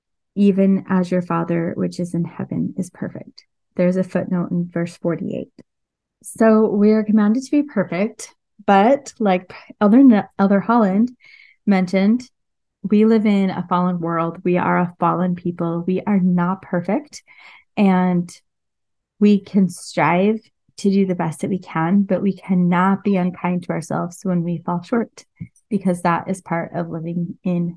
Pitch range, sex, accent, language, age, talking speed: 170-195 Hz, female, American, English, 20-39, 160 wpm